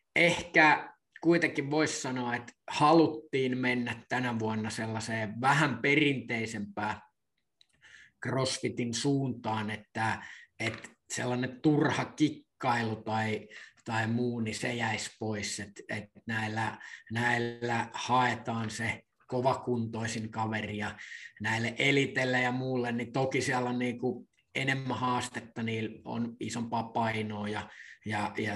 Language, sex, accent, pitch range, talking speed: Finnish, male, native, 115-135 Hz, 105 wpm